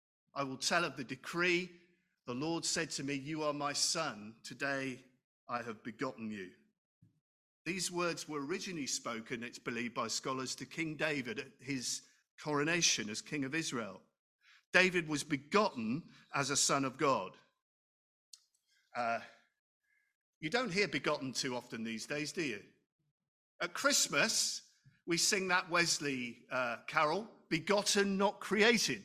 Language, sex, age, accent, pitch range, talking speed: English, male, 50-69, British, 145-215 Hz, 145 wpm